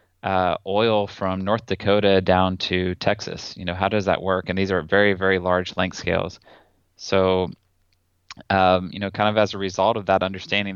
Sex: male